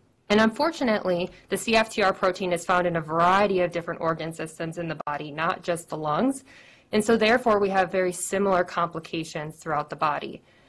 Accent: American